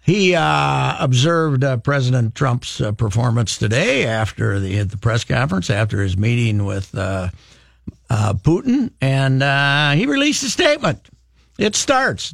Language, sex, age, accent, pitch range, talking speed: English, male, 60-79, American, 115-155 Hz, 140 wpm